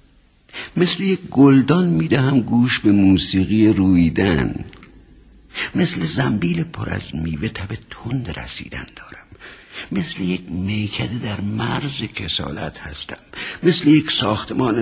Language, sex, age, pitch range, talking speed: Persian, male, 60-79, 85-125 Hz, 115 wpm